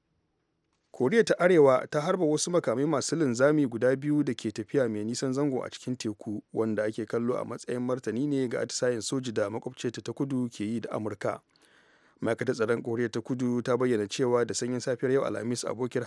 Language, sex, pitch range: English, male, 115-130 Hz